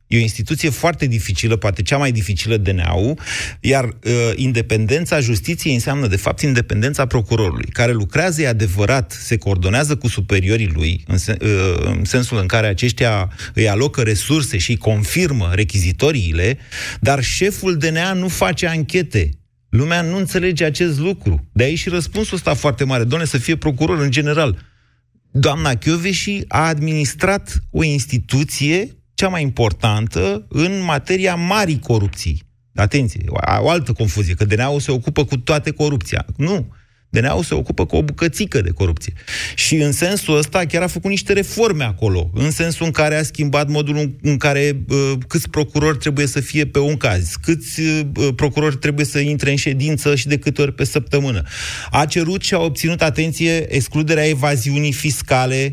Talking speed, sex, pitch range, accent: 165 wpm, male, 110-155 Hz, native